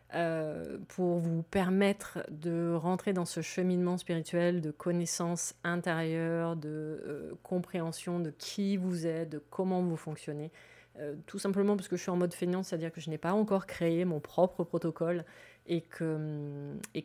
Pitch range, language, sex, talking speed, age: 155-180 Hz, French, female, 165 wpm, 30-49